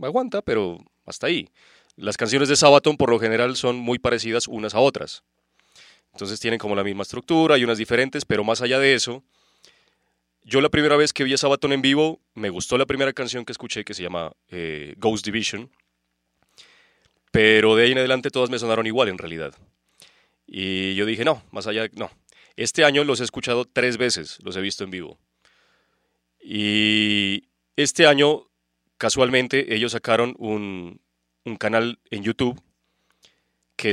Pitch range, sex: 95-125 Hz, male